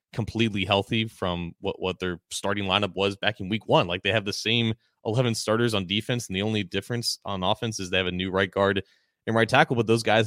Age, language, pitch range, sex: 20-39, English, 95-110 Hz, male